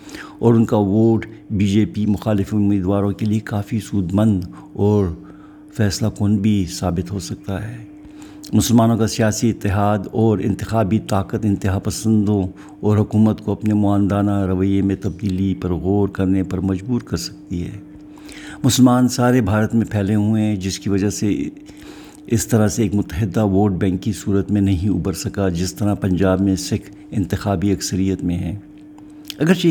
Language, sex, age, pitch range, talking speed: Urdu, male, 60-79, 100-115 Hz, 160 wpm